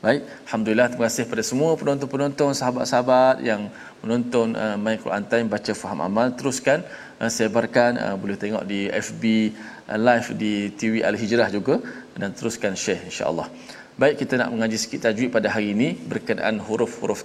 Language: Malayalam